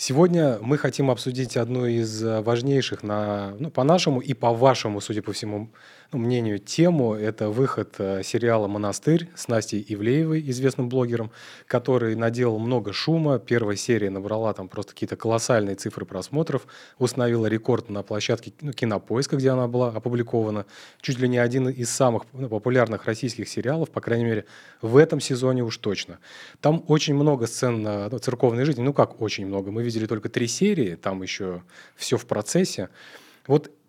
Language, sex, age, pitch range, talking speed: Russian, male, 30-49, 110-135 Hz, 155 wpm